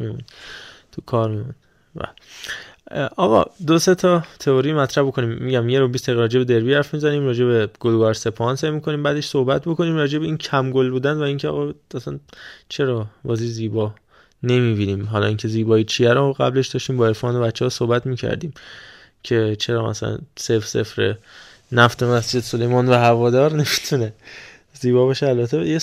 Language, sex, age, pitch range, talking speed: Persian, male, 20-39, 120-150 Hz, 165 wpm